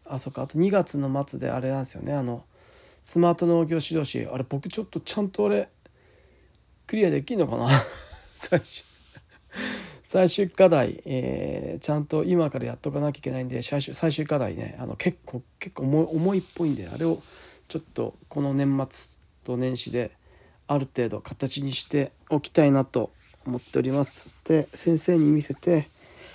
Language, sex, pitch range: Japanese, male, 130-175 Hz